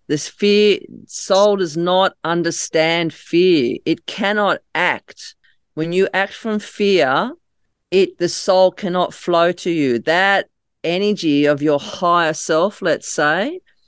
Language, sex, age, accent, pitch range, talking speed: English, female, 40-59, Australian, 155-200 Hz, 130 wpm